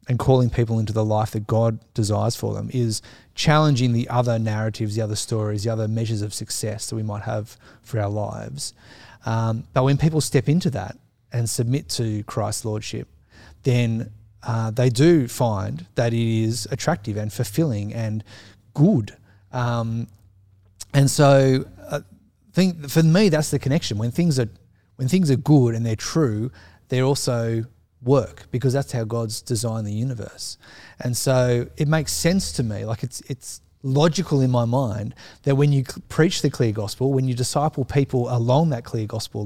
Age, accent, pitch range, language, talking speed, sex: 30-49, Australian, 110-135 Hz, English, 175 wpm, male